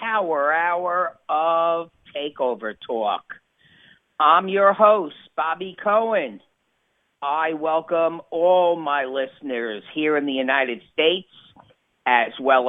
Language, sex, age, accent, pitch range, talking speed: English, female, 50-69, American, 135-200 Hz, 105 wpm